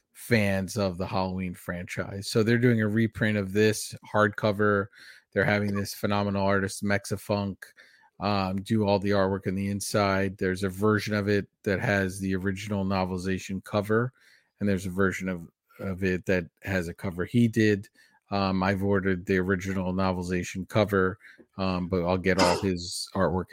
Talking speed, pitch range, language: 165 wpm, 95-105 Hz, English